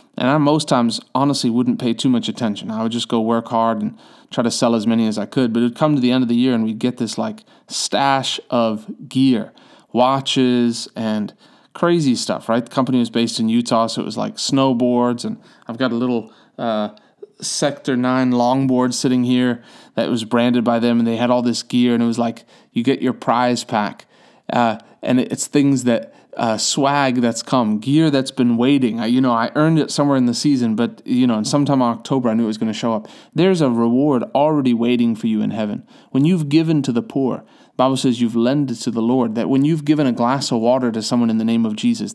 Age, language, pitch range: 30-49, English, 115-150 Hz